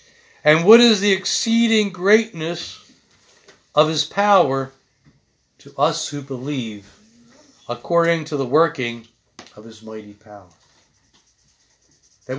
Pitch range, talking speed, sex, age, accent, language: 130-205 Hz, 105 wpm, male, 60-79, American, English